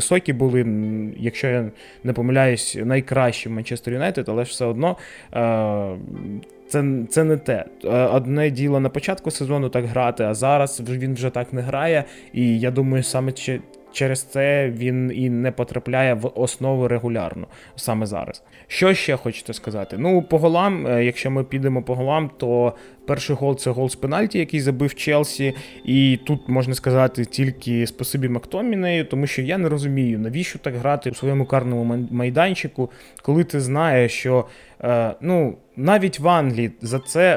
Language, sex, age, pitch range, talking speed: Ukrainian, male, 20-39, 125-155 Hz, 160 wpm